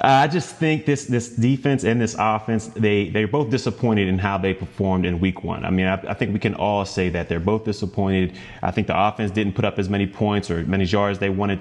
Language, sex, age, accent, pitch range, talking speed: English, male, 30-49, American, 95-115 Hz, 250 wpm